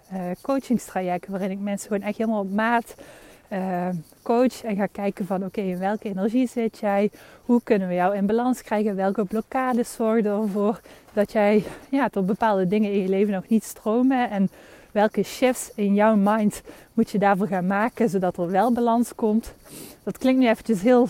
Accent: Dutch